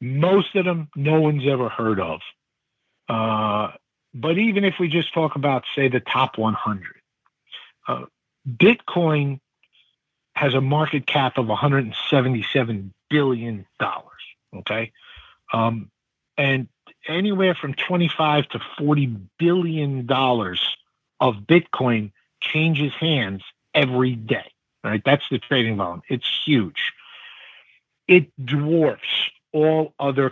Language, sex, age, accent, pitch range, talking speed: English, male, 50-69, American, 120-155 Hz, 115 wpm